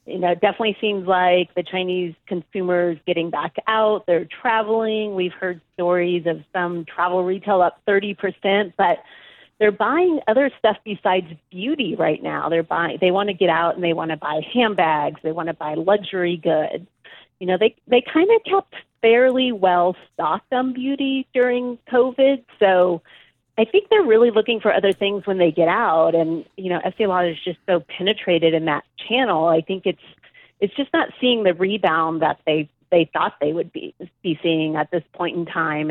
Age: 30-49